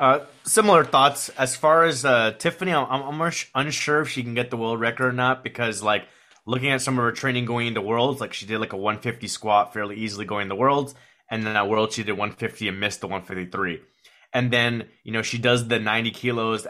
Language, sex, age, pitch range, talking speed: English, male, 20-39, 105-130 Hz, 225 wpm